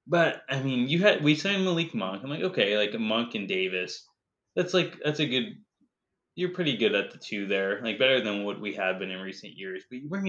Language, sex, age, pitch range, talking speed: English, male, 20-39, 100-125 Hz, 240 wpm